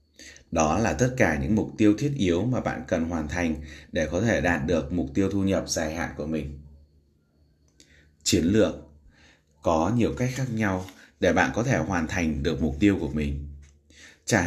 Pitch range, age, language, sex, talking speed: 75-105 Hz, 20-39, Vietnamese, male, 190 wpm